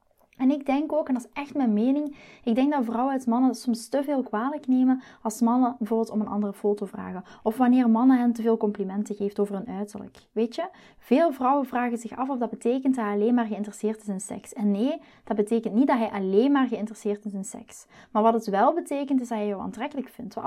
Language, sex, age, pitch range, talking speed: Dutch, female, 20-39, 210-260 Hz, 245 wpm